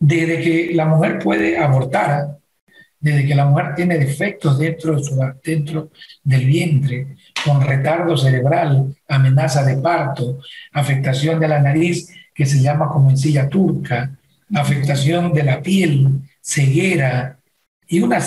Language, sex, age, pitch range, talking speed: Spanish, male, 50-69, 140-175 Hz, 135 wpm